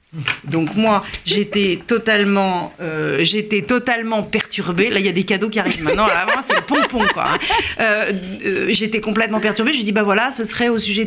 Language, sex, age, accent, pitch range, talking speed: French, female, 40-59, French, 170-220 Hz, 205 wpm